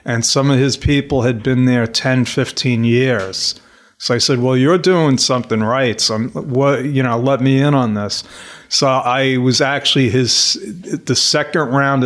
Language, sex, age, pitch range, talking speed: English, male, 40-59, 120-135 Hz, 180 wpm